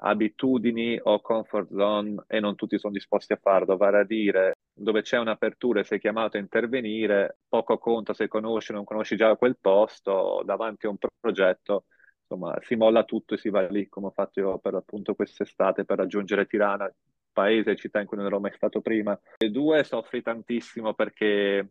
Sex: male